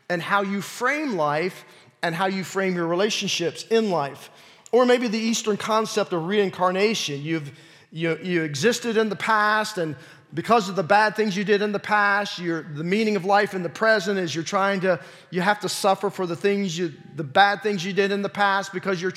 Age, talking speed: 40-59, 210 wpm